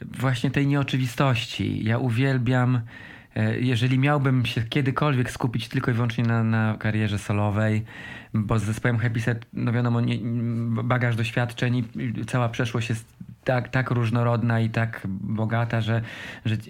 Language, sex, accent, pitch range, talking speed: Polish, male, native, 110-130 Hz, 135 wpm